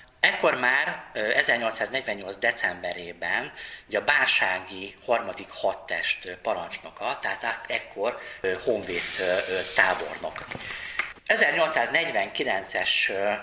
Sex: male